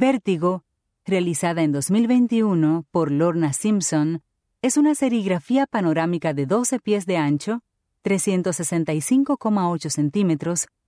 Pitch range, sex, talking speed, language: 150-215 Hz, female, 100 wpm, English